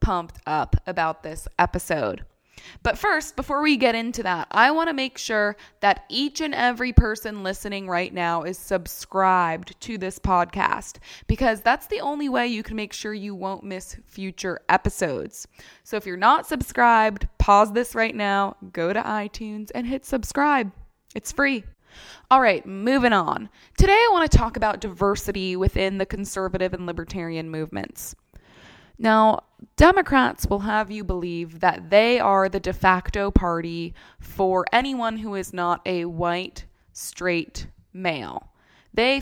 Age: 20-39